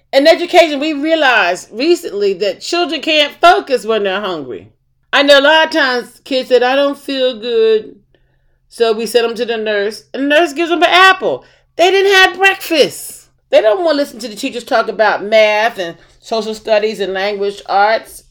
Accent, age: American, 40-59